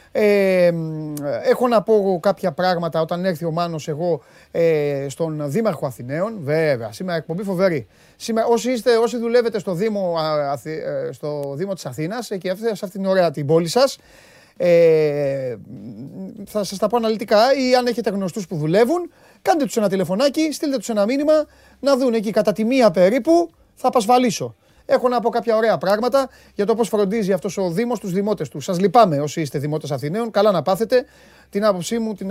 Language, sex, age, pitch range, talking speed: Greek, male, 30-49, 155-215 Hz, 185 wpm